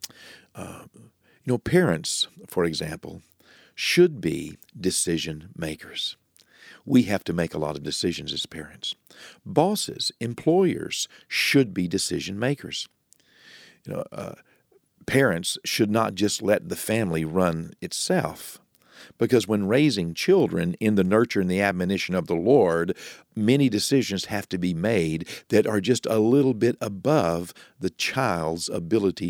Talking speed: 135 wpm